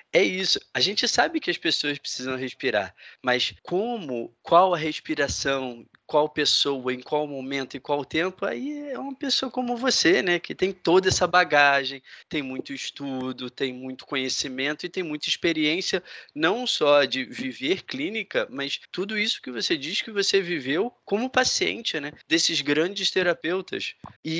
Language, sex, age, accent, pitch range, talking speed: Portuguese, male, 20-39, Brazilian, 130-185 Hz, 160 wpm